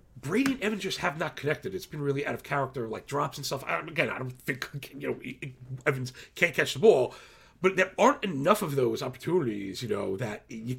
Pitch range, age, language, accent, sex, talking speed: 125-170 Hz, 40-59, English, American, male, 220 wpm